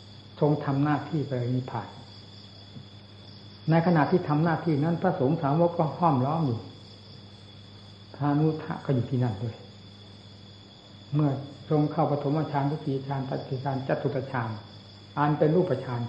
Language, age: Thai, 60-79